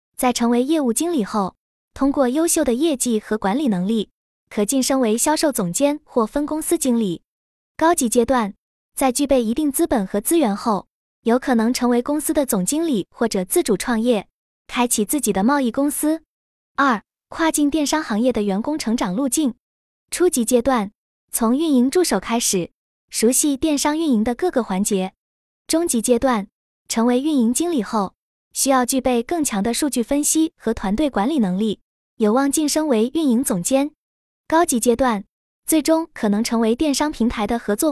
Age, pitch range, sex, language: 20-39, 225-300 Hz, female, Chinese